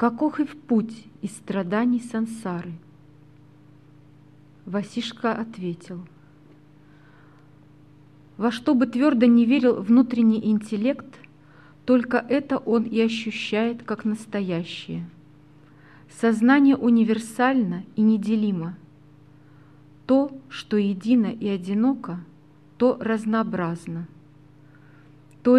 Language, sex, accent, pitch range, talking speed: Russian, female, native, 150-235 Hz, 85 wpm